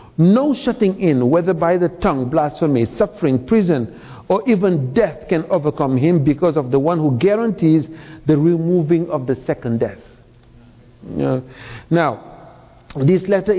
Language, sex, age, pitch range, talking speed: English, male, 50-69, 130-180 Hz, 135 wpm